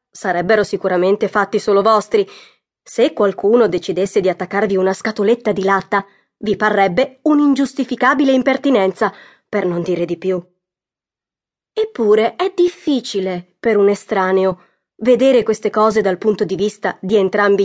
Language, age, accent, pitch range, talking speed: Italian, 20-39, native, 195-235 Hz, 130 wpm